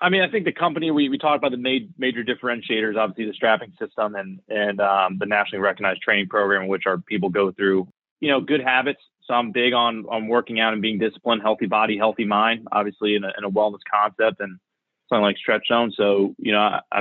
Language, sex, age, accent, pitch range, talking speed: English, male, 20-39, American, 105-120 Hz, 230 wpm